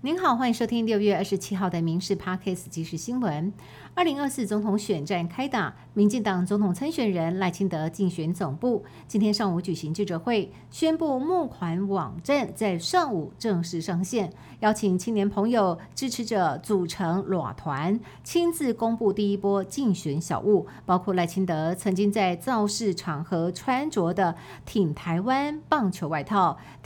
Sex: female